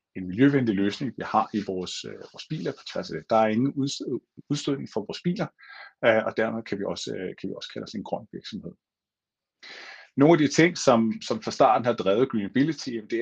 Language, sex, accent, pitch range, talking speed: Danish, male, native, 105-155 Hz, 205 wpm